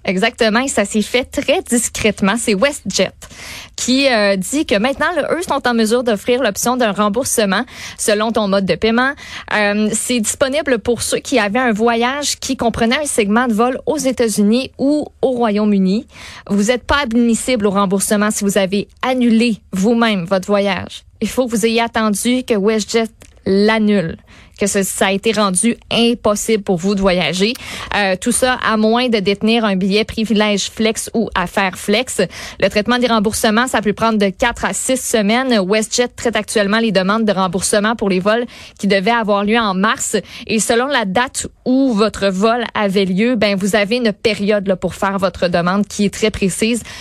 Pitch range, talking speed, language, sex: 200-235 Hz, 185 wpm, French, female